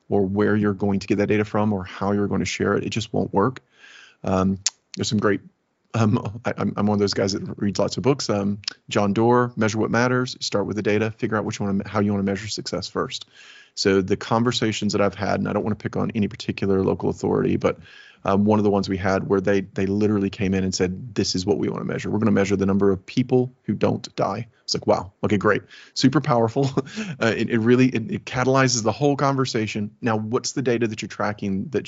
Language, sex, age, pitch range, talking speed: English, male, 30-49, 100-115 Hz, 245 wpm